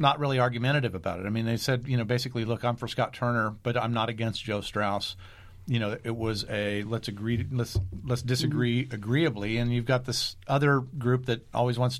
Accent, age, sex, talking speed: American, 50-69, male, 215 wpm